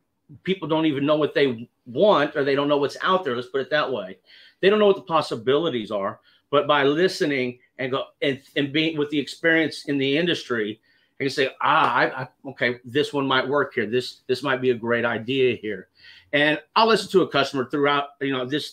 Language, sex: English, male